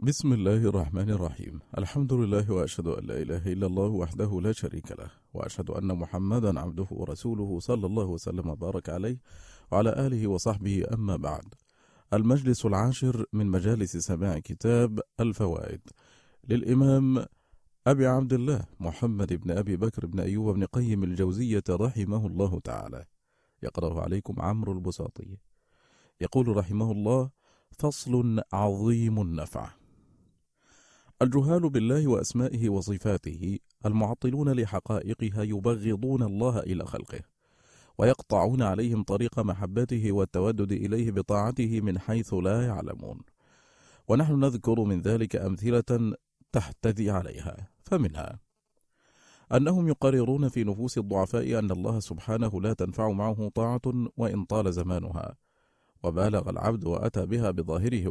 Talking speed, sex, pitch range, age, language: 115 wpm, male, 95-120 Hz, 40-59, Arabic